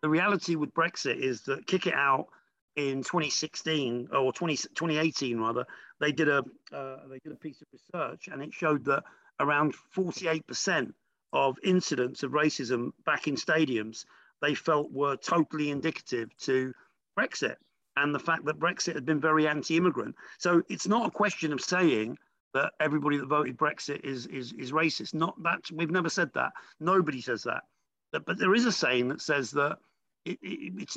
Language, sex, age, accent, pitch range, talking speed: English, male, 50-69, British, 140-180 Hz, 180 wpm